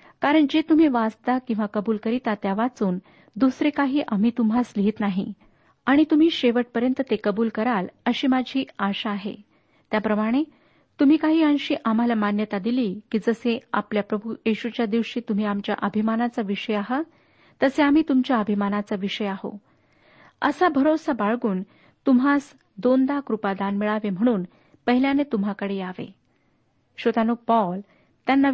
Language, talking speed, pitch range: Marathi, 135 wpm, 210-270 Hz